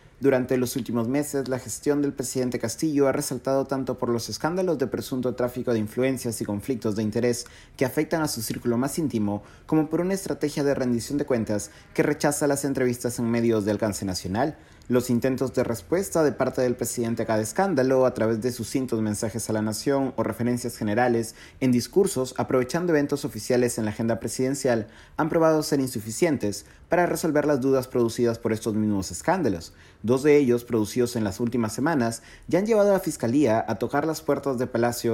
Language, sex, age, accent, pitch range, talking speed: Spanish, male, 30-49, Mexican, 110-135 Hz, 190 wpm